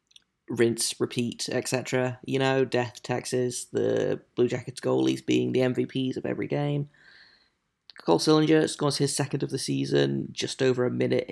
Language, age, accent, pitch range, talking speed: English, 20-39, British, 105-140 Hz, 155 wpm